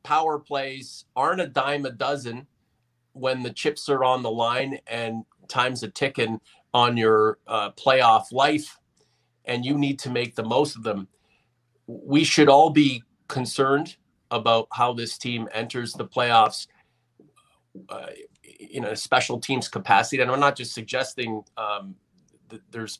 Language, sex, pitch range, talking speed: English, male, 115-135 Hz, 150 wpm